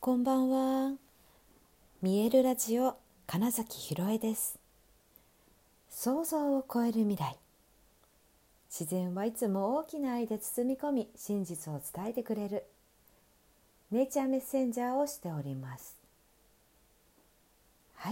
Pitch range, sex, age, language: 155-225 Hz, female, 50-69, Japanese